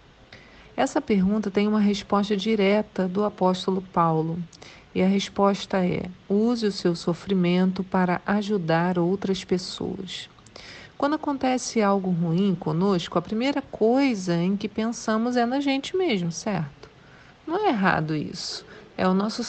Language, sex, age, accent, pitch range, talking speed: Portuguese, female, 50-69, Brazilian, 185-225 Hz, 135 wpm